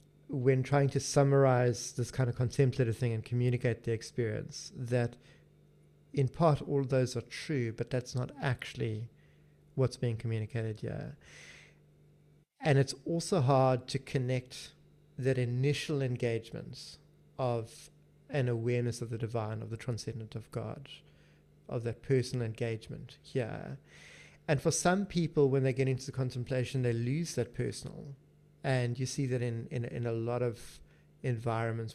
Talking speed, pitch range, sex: 145 wpm, 120-140 Hz, male